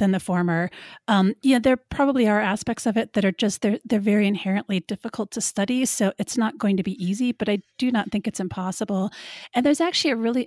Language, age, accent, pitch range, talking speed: English, 40-59, American, 185-225 Hz, 230 wpm